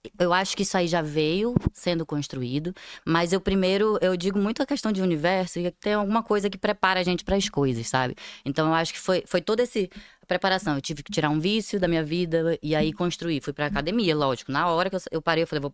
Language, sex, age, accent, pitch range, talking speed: Portuguese, female, 10-29, Brazilian, 150-190 Hz, 250 wpm